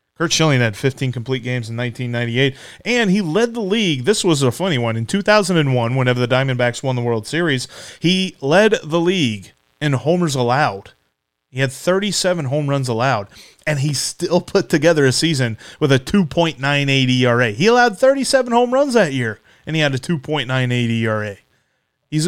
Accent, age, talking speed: American, 30-49, 175 wpm